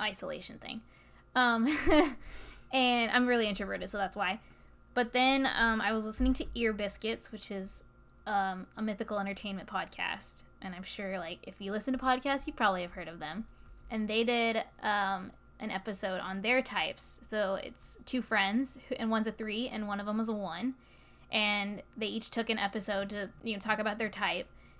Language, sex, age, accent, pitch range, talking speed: English, female, 10-29, American, 200-240 Hz, 190 wpm